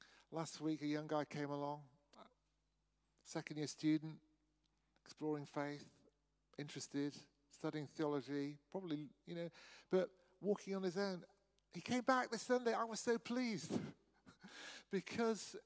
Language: English